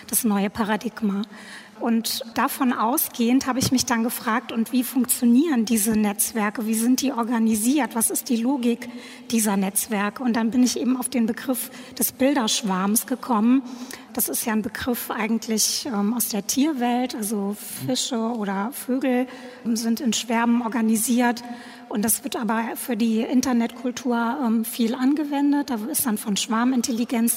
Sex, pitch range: female, 225-255 Hz